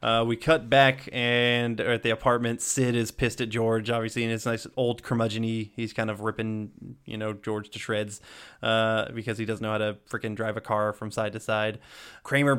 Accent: American